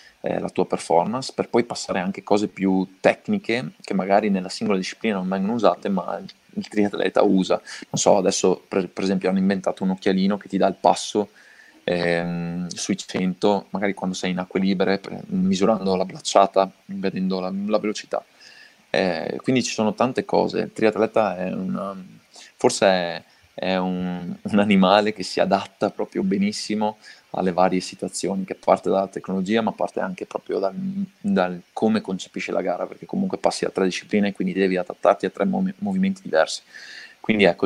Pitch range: 95-105 Hz